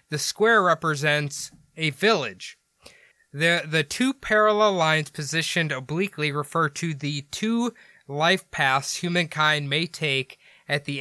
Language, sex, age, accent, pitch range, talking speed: English, male, 20-39, American, 145-180 Hz, 125 wpm